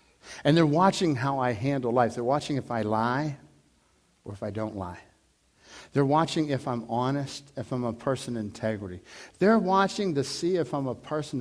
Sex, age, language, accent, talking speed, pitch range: male, 60-79, English, American, 190 wpm, 145-205 Hz